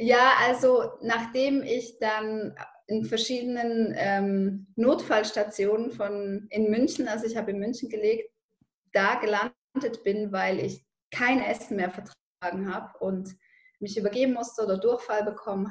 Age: 20-39